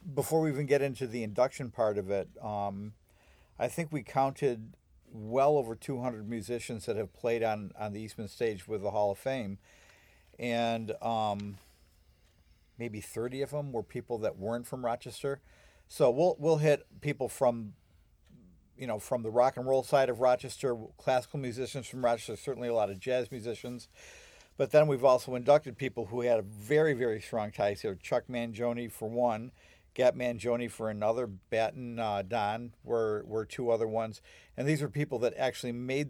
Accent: American